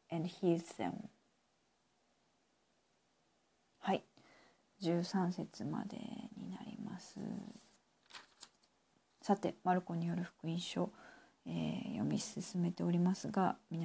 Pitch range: 170-220 Hz